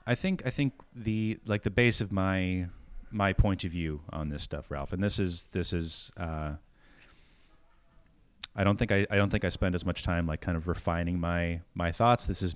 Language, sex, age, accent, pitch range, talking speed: English, male, 30-49, American, 85-100 Hz, 215 wpm